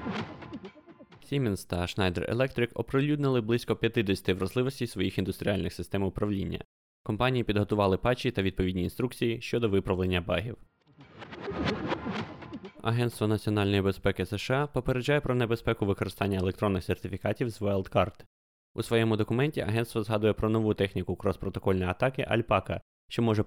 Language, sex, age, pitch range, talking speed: Ukrainian, male, 20-39, 95-120 Hz, 120 wpm